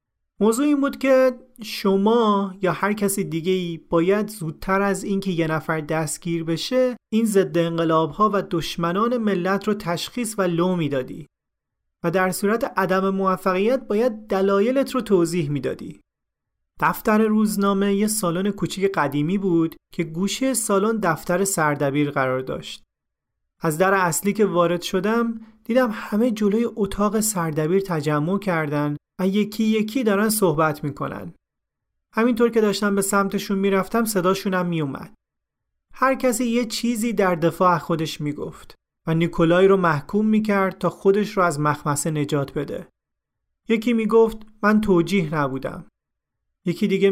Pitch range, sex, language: 165-210 Hz, male, Persian